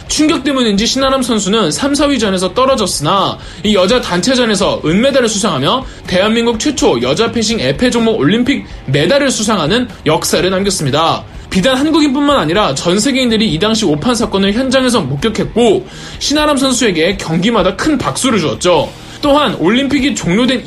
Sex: male